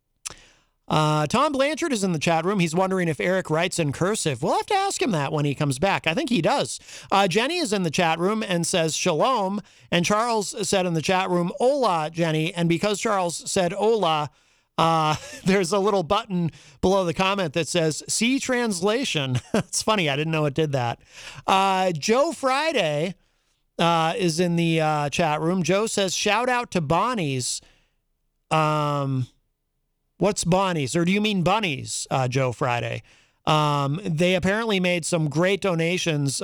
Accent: American